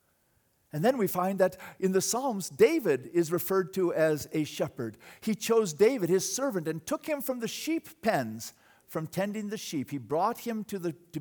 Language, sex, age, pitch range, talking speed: English, male, 50-69, 150-255 Hz, 195 wpm